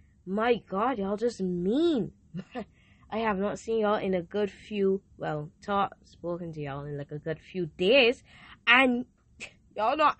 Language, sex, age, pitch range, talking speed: English, female, 10-29, 170-250 Hz, 165 wpm